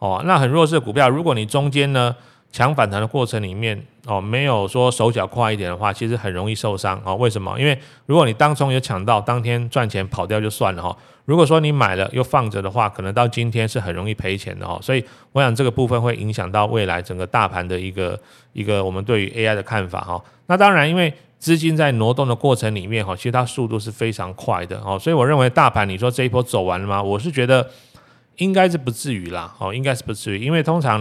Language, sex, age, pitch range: Chinese, male, 30-49, 105-135 Hz